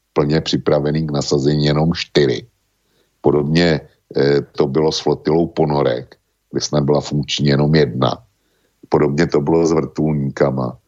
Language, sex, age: Slovak, male, 60-79